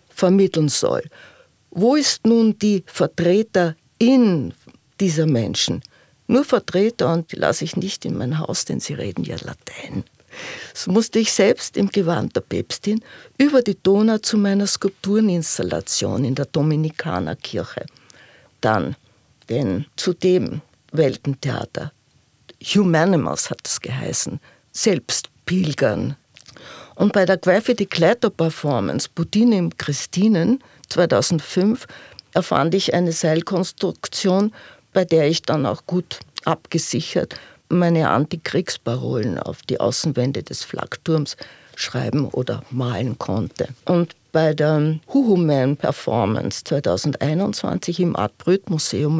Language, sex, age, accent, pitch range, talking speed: English, female, 50-69, Austrian, 145-195 Hz, 110 wpm